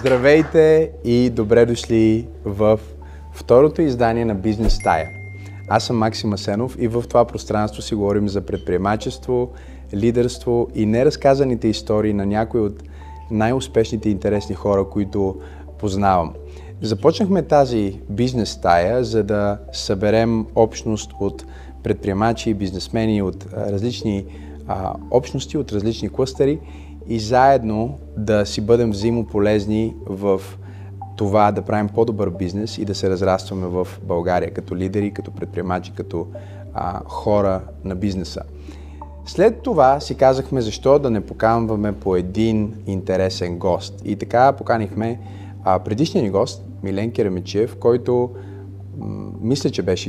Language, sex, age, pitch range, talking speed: Bulgarian, male, 30-49, 95-115 Hz, 125 wpm